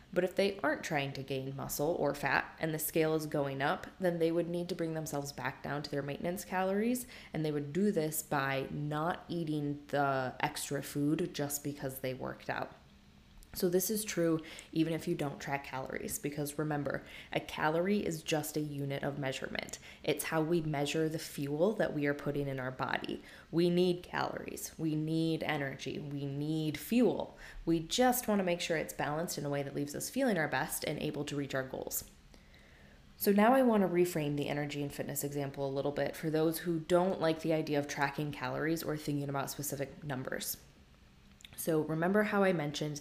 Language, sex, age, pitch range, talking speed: English, female, 20-39, 140-170 Hz, 200 wpm